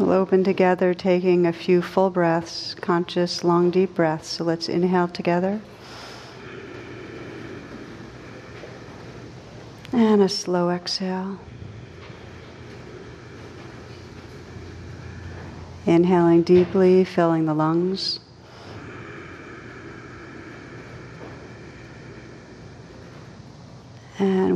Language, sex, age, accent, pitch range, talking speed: English, female, 50-69, American, 135-185 Hz, 65 wpm